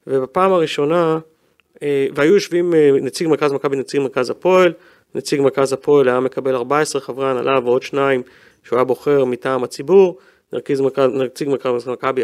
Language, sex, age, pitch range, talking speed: Hebrew, male, 30-49, 135-205 Hz, 140 wpm